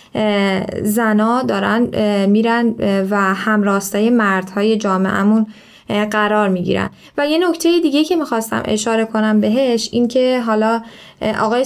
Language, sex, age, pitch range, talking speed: Persian, female, 10-29, 210-245 Hz, 115 wpm